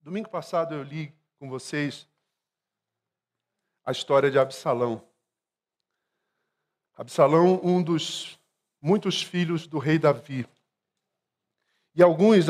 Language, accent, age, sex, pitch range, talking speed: Portuguese, Brazilian, 40-59, male, 150-185 Hz, 95 wpm